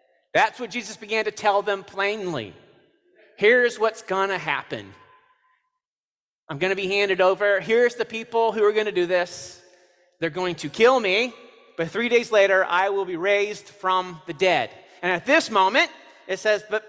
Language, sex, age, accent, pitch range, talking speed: English, male, 30-49, American, 205-310 Hz, 170 wpm